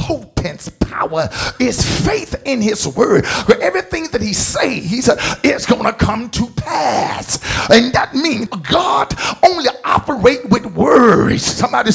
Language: English